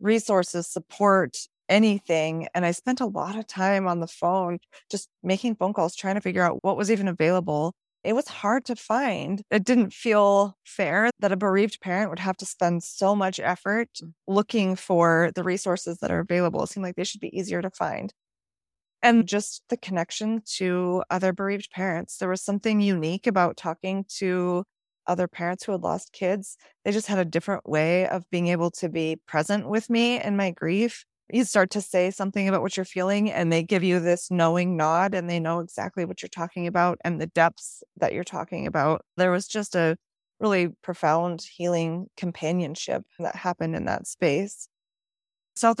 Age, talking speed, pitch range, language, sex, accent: 20-39, 190 wpm, 170-200 Hz, English, female, American